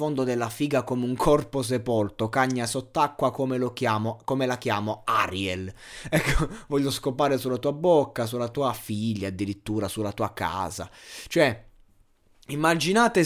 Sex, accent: male, native